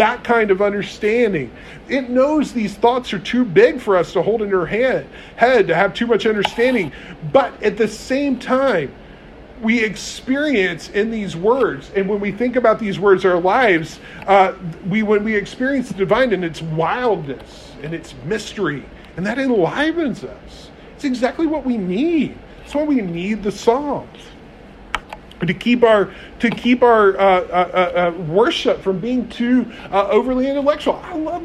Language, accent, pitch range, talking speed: English, American, 185-255 Hz, 165 wpm